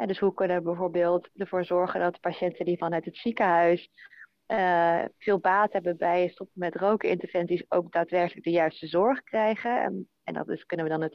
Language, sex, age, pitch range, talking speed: Dutch, female, 30-49, 170-195 Hz, 200 wpm